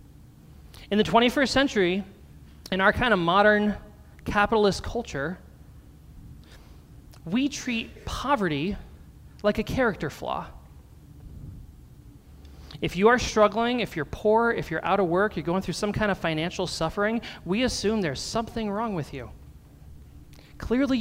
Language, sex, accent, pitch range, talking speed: English, male, American, 155-230 Hz, 130 wpm